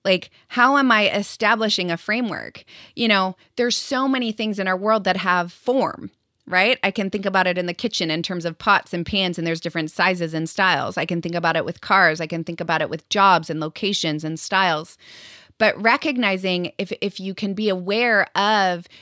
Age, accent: 30-49, American